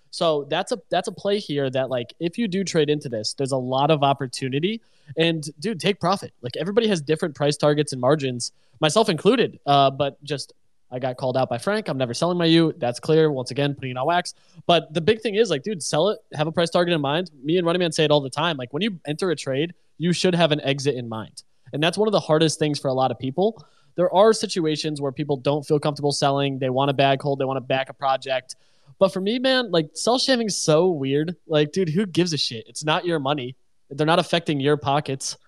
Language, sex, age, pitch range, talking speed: English, male, 20-39, 140-175 Hz, 255 wpm